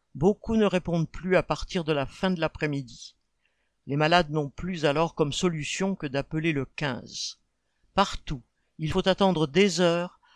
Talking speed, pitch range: 160 wpm, 155-200 Hz